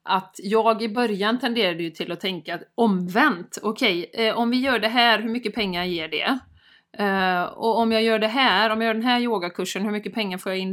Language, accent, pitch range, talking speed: Swedish, native, 195-250 Hz, 240 wpm